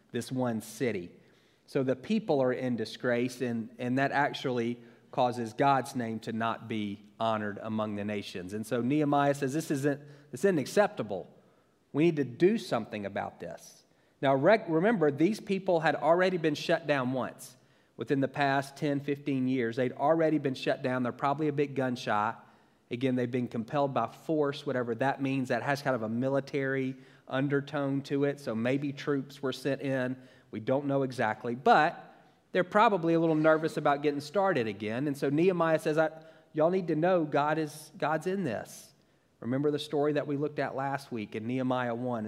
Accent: American